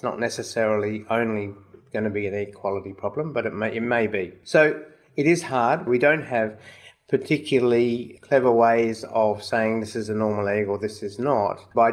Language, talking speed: English, 190 wpm